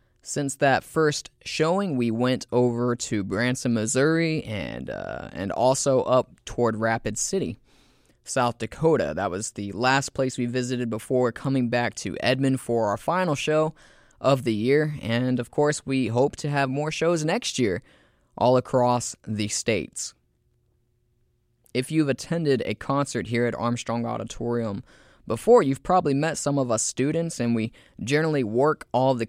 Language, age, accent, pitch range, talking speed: English, 20-39, American, 120-140 Hz, 160 wpm